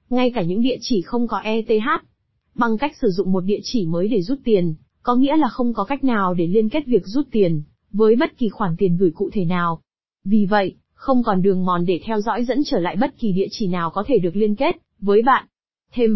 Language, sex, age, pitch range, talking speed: Vietnamese, female, 20-39, 195-250 Hz, 245 wpm